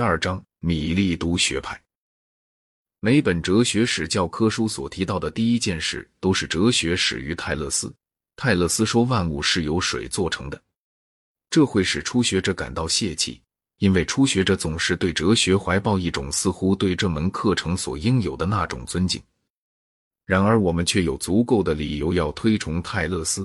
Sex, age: male, 30-49